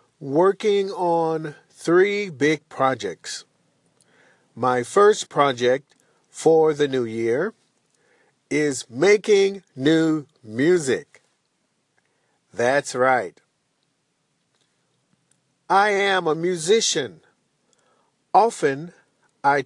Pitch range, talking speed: 130-185 Hz, 75 wpm